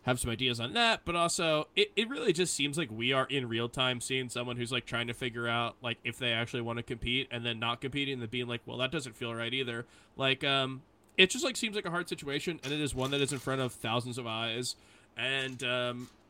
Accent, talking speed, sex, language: American, 260 wpm, male, English